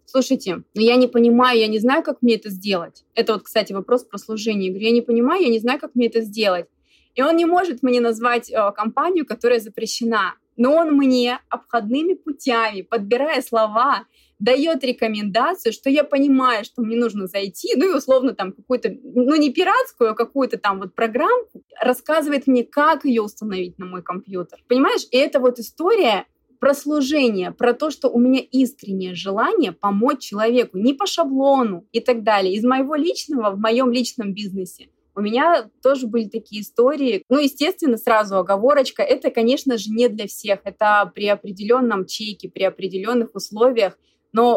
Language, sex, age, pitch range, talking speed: Russian, female, 20-39, 205-260 Hz, 170 wpm